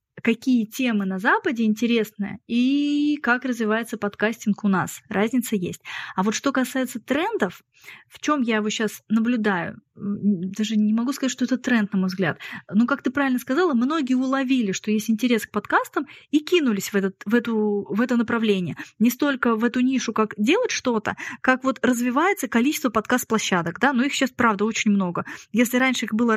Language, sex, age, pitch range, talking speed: Russian, female, 20-39, 210-260 Hz, 170 wpm